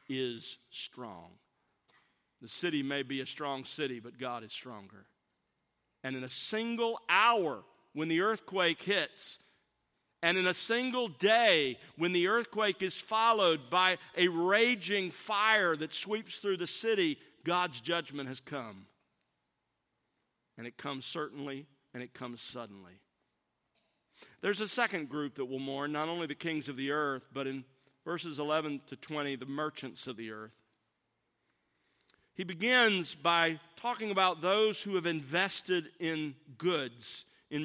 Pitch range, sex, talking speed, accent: 140-190 Hz, male, 145 wpm, American